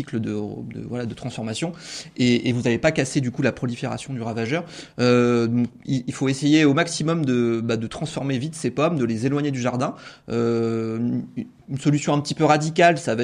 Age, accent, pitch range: 30-49, French, 120-150 Hz